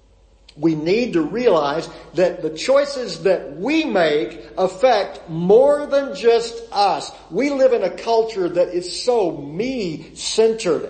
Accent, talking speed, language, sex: American, 130 wpm, English, male